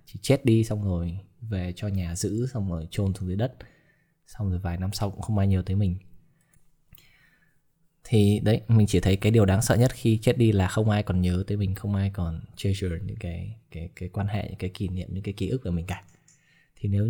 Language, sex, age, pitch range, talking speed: Vietnamese, male, 20-39, 95-120 Hz, 240 wpm